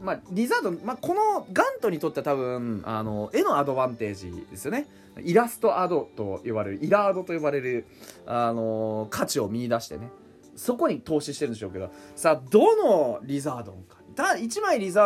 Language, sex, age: Japanese, male, 20-39